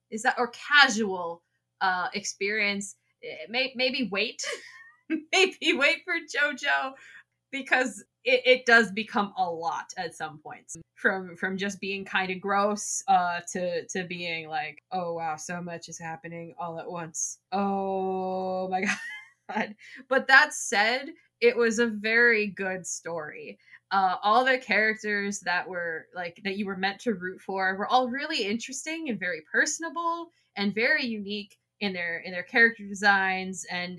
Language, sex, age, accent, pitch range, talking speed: English, female, 20-39, American, 185-250 Hz, 155 wpm